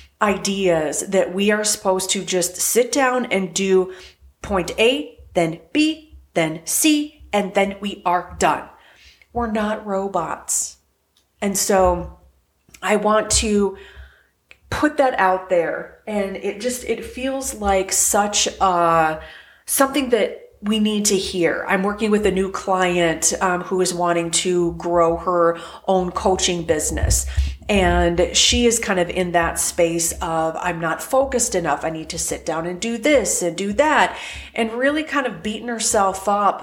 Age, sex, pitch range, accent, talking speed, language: 30-49, female, 175-220 Hz, American, 155 wpm, English